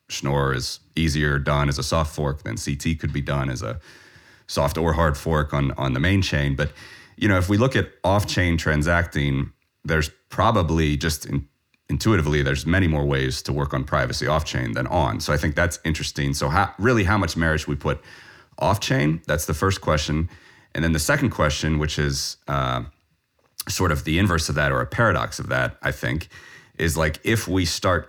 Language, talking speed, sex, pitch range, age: English, 195 wpm, male, 75-85 Hz, 30-49